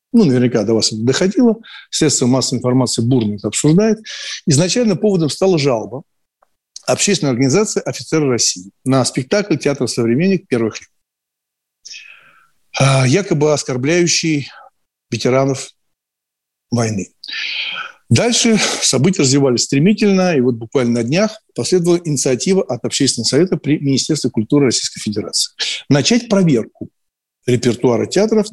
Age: 60-79